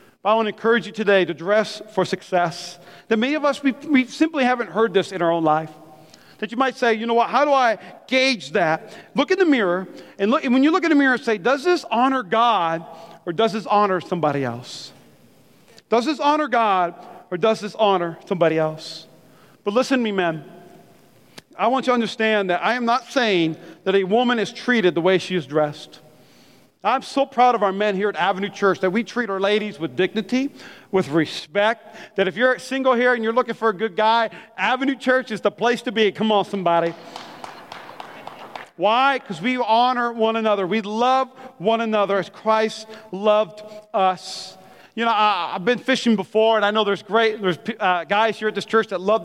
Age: 40-59